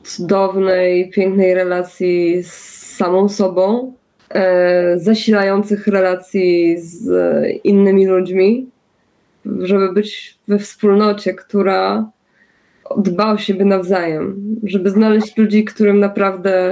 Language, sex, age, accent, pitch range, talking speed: Polish, female, 20-39, native, 190-225 Hz, 90 wpm